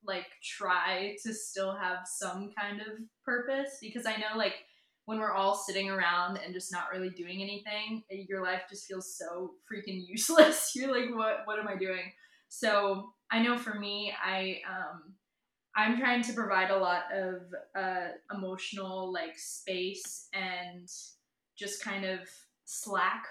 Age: 20-39